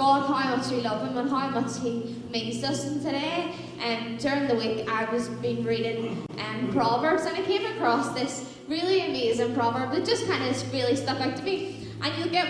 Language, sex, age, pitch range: English, female, 10-29, 240-300 Hz